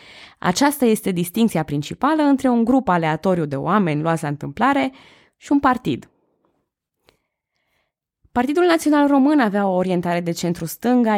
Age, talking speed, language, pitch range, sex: 20-39, 130 wpm, Romanian, 155-210 Hz, female